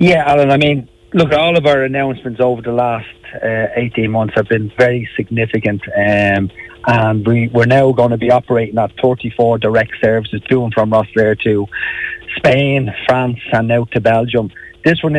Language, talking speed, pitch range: English, 180 wpm, 110-130 Hz